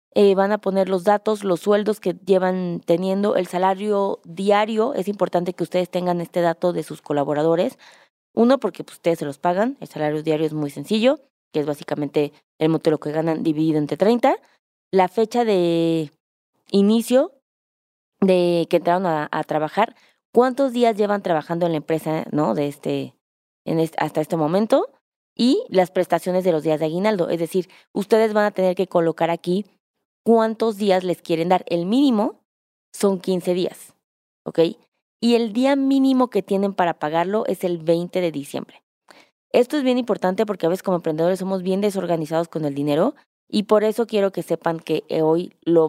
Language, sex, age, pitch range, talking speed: Spanish, female, 20-39, 160-210 Hz, 180 wpm